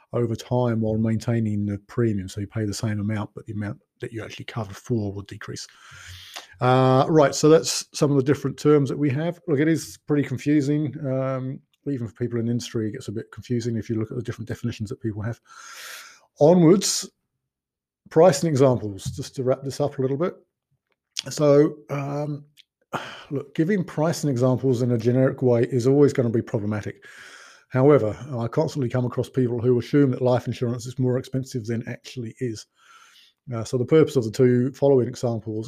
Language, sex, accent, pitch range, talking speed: English, male, British, 115-135 Hz, 190 wpm